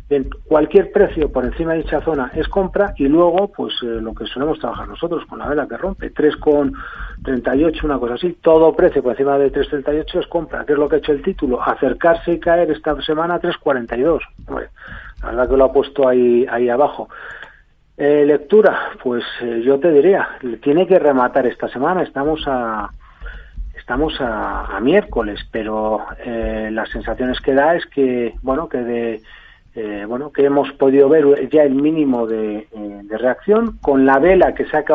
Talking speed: 185 wpm